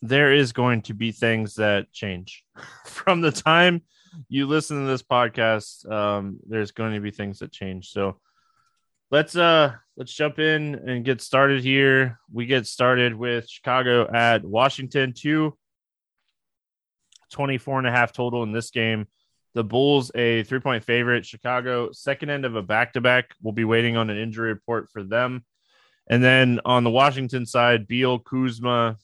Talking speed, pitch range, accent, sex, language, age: 160 wpm, 115-135 Hz, American, male, English, 20-39